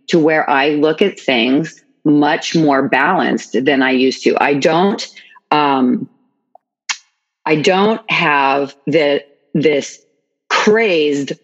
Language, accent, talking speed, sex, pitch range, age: English, American, 115 wpm, female, 150-190 Hz, 40-59